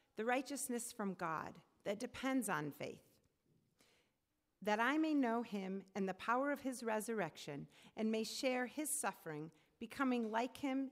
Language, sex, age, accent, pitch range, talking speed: English, female, 40-59, American, 195-270 Hz, 150 wpm